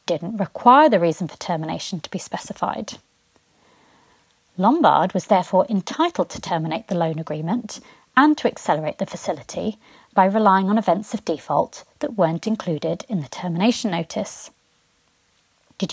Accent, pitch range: British, 170-240 Hz